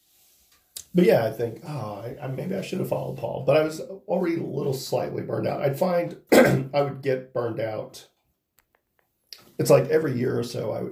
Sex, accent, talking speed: male, American, 200 wpm